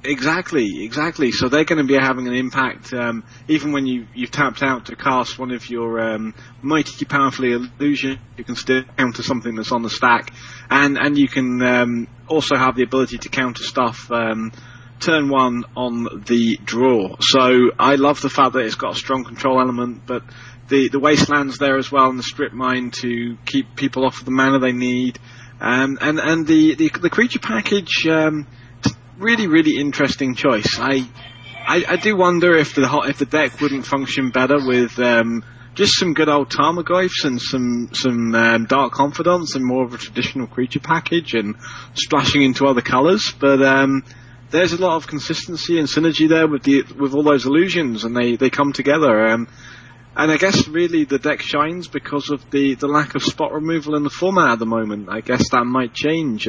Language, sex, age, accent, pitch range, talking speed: English, male, 30-49, British, 120-145 Hz, 195 wpm